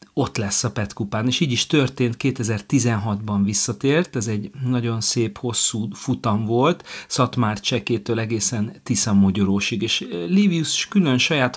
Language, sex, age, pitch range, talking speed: Hungarian, male, 40-59, 105-130 Hz, 130 wpm